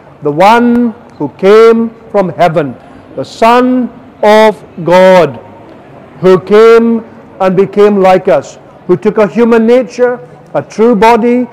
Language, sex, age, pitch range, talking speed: English, male, 50-69, 170-210 Hz, 125 wpm